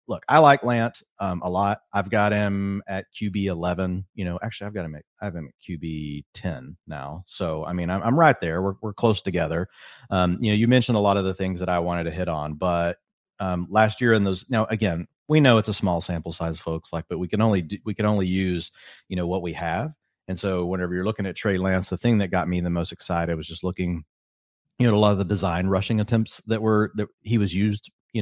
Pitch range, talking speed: 90-110 Hz, 255 wpm